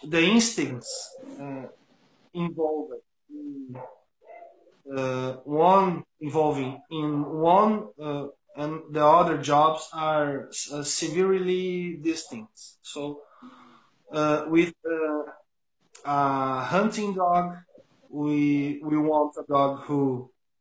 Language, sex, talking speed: English, male, 95 wpm